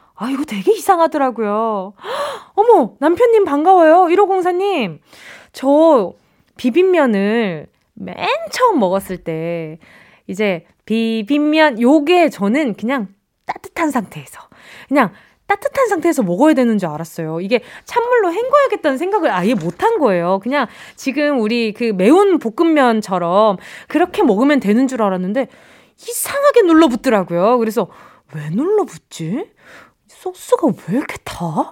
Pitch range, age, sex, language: 215-350 Hz, 20-39, female, Korean